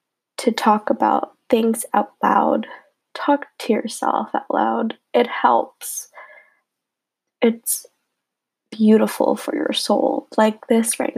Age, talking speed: 10-29, 115 wpm